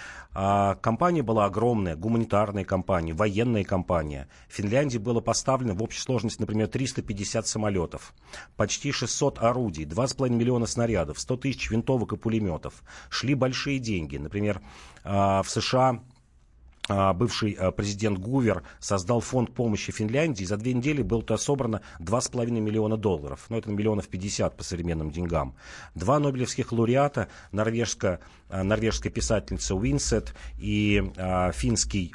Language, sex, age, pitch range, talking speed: Russian, male, 40-59, 95-120 Hz, 125 wpm